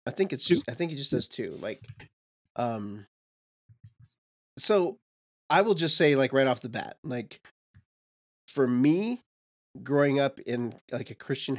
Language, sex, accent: English, male, American